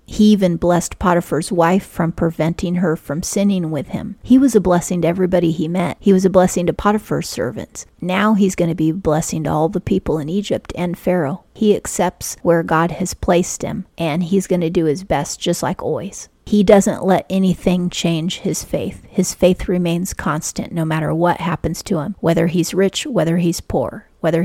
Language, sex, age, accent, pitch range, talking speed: English, female, 30-49, American, 170-195 Hz, 205 wpm